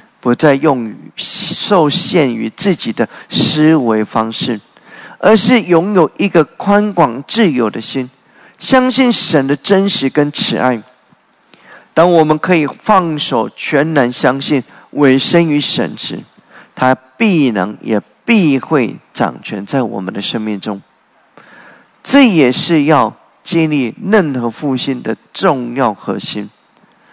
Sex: male